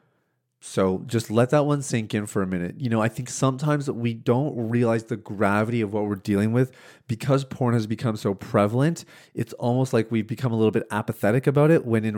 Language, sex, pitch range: English, male, 105-125 Hz